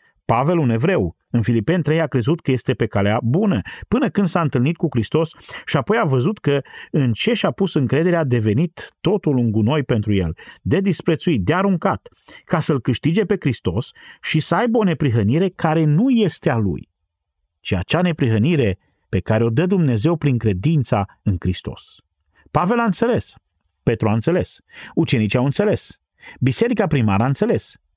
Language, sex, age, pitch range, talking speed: Romanian, male, 40-59, 115-175 Hz, 170 wpm